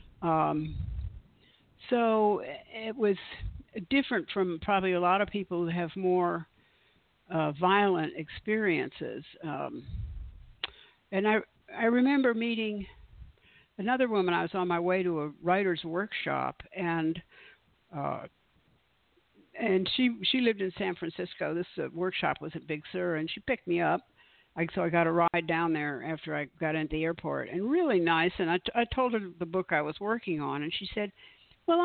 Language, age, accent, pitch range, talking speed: English, 60-79, American, 170-230 Hz, 165 wpm